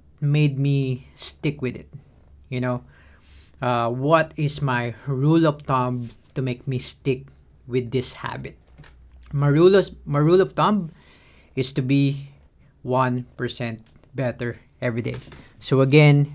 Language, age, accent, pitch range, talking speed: English, 20-39, Filipino, 110-140 Hz, 140 wpm